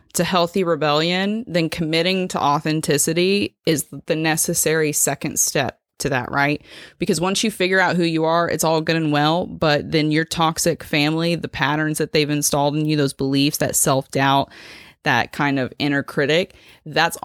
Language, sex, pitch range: English, female, 140-165 Hz